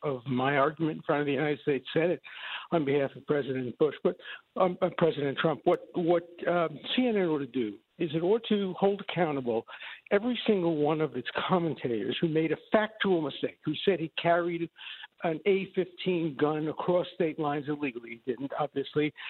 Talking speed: 180 wpm